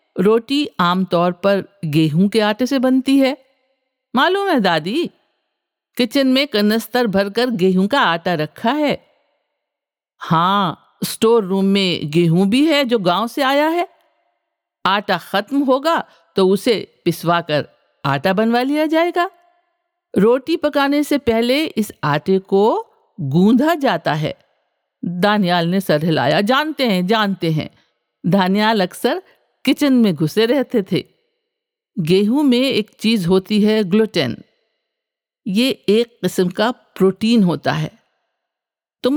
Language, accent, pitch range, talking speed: Hindi, native, 185-280 Hz, 130 wpm